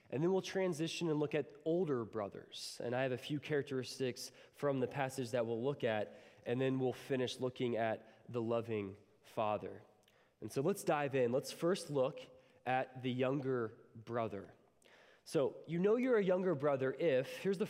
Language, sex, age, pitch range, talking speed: English, male, 20-39, 135-180 Hz, 180 wpm